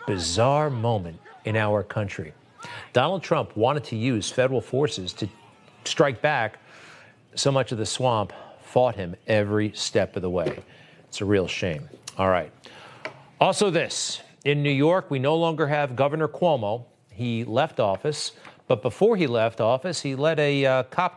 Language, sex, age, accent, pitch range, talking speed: English, male, 40-59, American, 110-145 Hz, 160 wpm